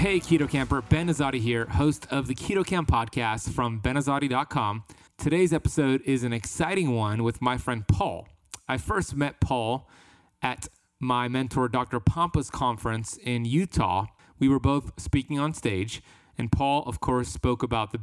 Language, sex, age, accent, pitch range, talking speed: English, male, 30-49, American, 115-140 Hz, 165 wpm